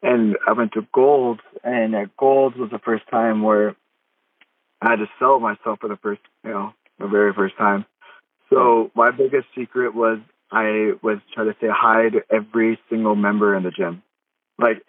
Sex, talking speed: male, 180 wpm